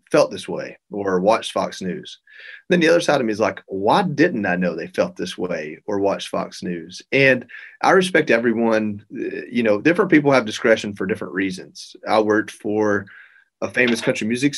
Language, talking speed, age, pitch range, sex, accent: English, 195 wpm, 30-49, 105-150 Hz, male, American